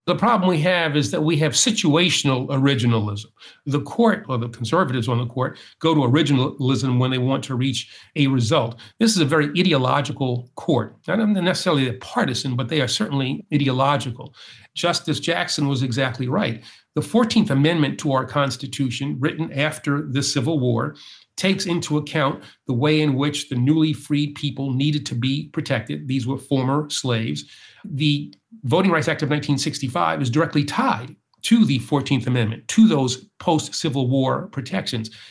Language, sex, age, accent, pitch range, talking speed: English, male, 50-69, American, 130-160 Hz, 165 wpm